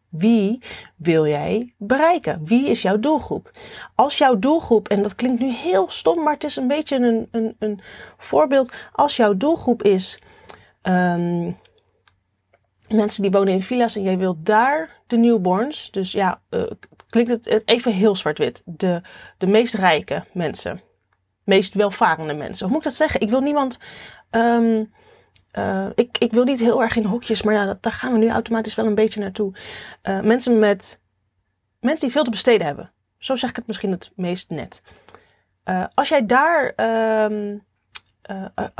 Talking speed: 170 wpm